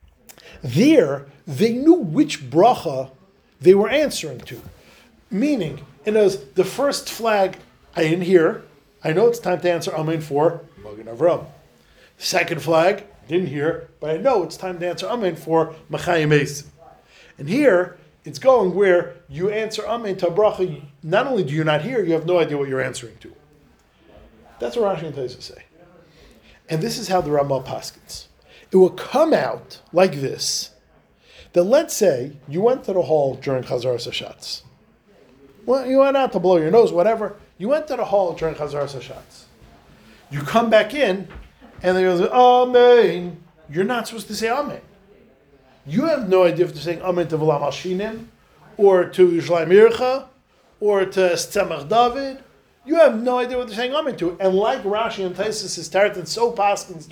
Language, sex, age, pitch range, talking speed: English, male, 40-59, 155-215 Hz, 170 wpm